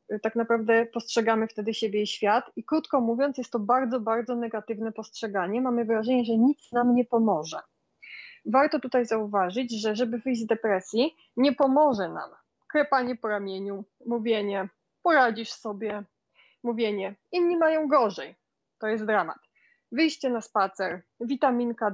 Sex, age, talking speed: female, 20-39, 140 wpm